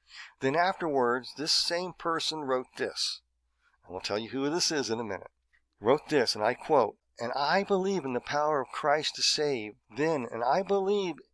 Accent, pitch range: American, 125-155 Hz